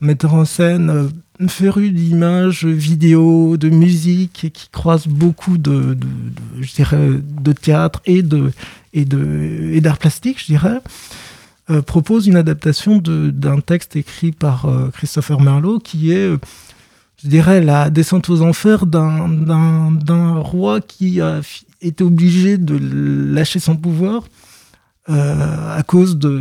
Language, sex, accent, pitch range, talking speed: French, male, French, 145-170 Hz, 150 wpm